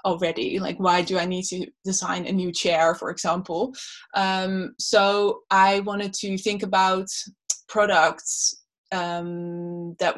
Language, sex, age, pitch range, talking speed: English, female, 20-39, 185-215 Hz, 135 wpm